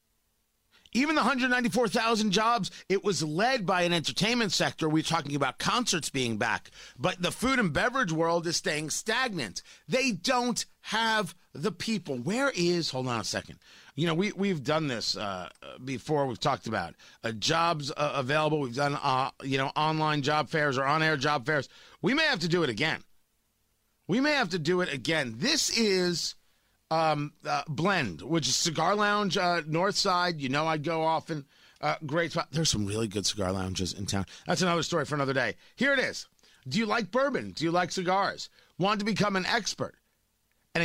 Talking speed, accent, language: 195 wpm, American, English